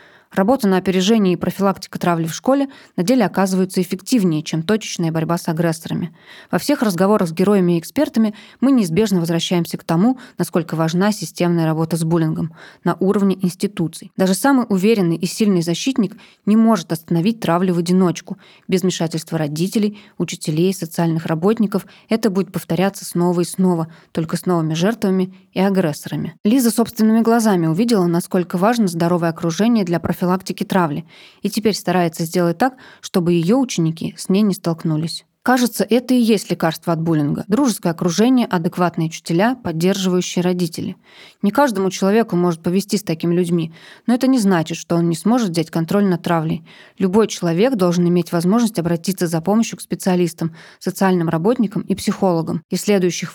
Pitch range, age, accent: 170-210 Hz, 20-39, native